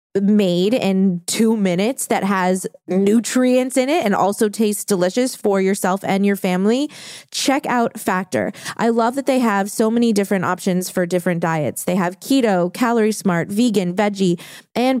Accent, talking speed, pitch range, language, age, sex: American, 165 wpm, 190-240 Hz, English, 20-39, female